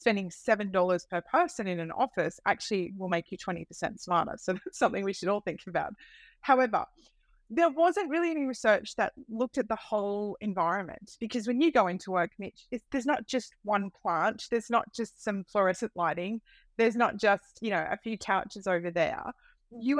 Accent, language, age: Australian, English, 30-49